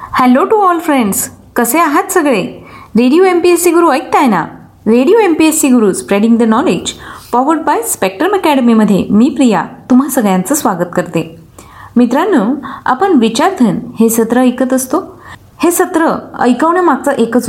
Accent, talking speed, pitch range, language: native, 145 wpm, 200-280 Hz, Marathi